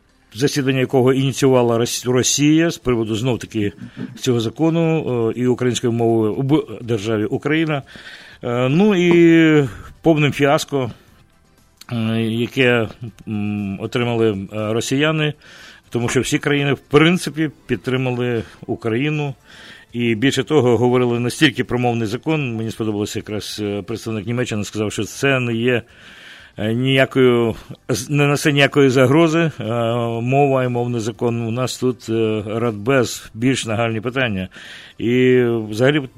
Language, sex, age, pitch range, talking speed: English, male, 50-69, 110-135 Hz, 110 wpm